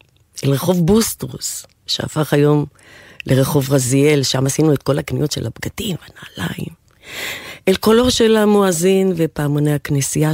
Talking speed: 120 wpm